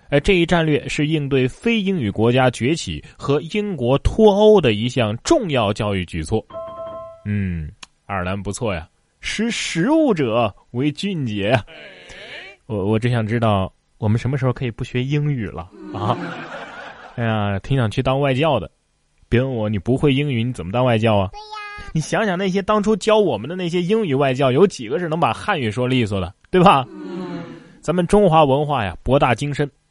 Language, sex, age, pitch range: Chinese, male, 20-39, 110-160 Hz